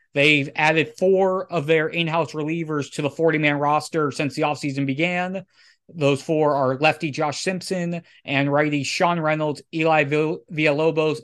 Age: 20-39